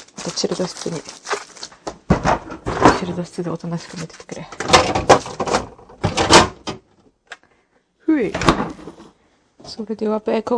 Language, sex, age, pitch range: Japanese, female, 30-49, 180-230 Hz